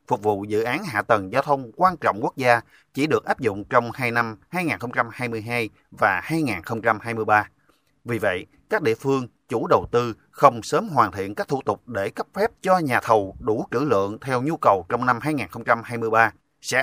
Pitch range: 110-145 Hz